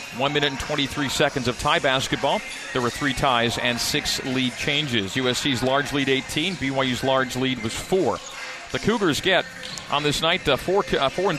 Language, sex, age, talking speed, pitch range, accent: English, male, 40-59, 190 wpm, 130-155 Hz, American